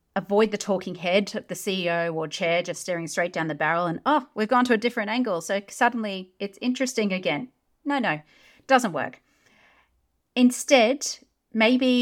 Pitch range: 170-235 Hz